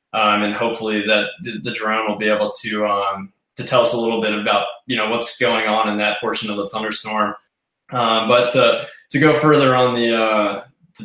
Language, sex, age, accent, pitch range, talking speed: English, male, 20-39, American, 110-130 Hz, 205 wpm